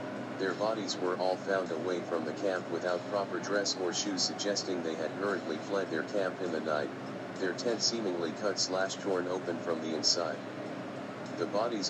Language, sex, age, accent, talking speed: English, male, 40-59, American, 180 wpm